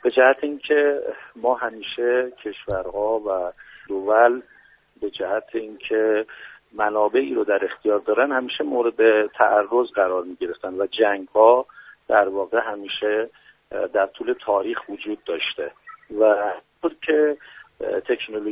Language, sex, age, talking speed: Persian, male, 50-69, 110 wpm